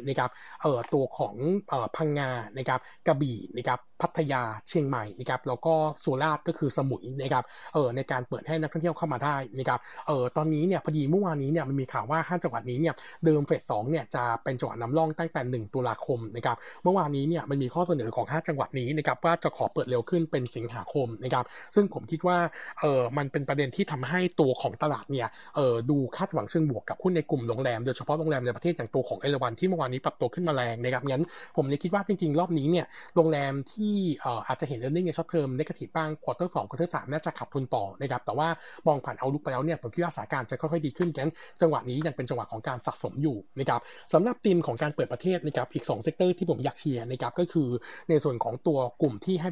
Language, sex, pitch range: Thai, male, 130-165 Hz